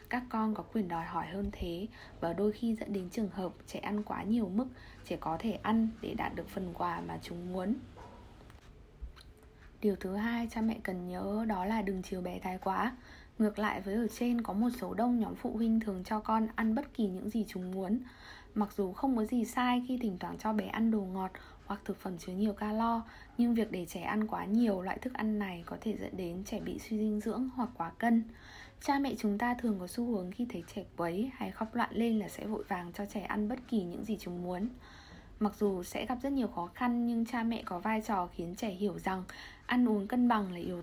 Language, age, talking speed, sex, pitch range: Vietnamese, 20-39, 240 wpm, female, 190-230 Hz